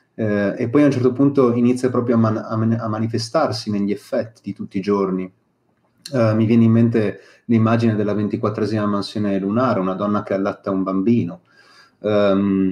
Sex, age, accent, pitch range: male, 30-49, native, 105-125 Hz